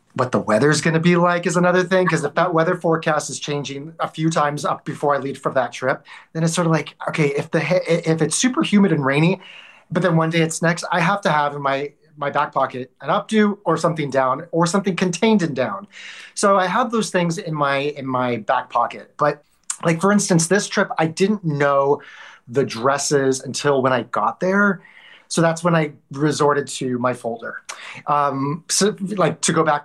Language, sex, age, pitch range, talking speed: English, male, 30-49, 140-175 Hz, 215 wpm